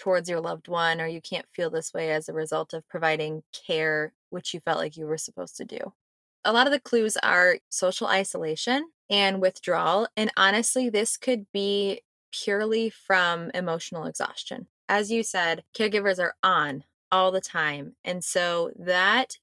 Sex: female